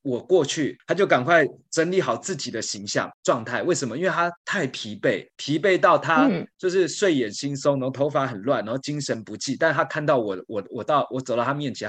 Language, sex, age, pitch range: Chinese, male, 20-39, 125-155 Hz